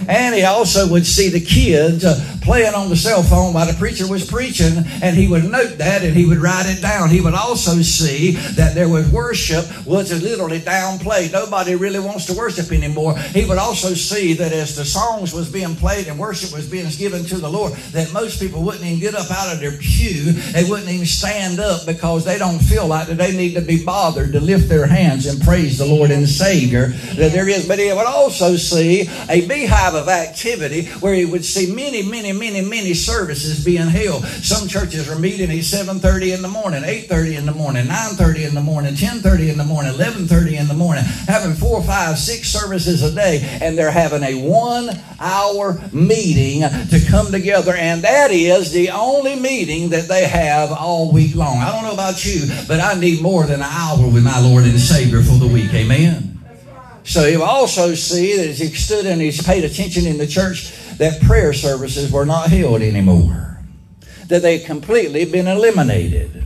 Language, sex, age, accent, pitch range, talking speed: English, male, 60-79, American, 155-190 Hz, 205 wpm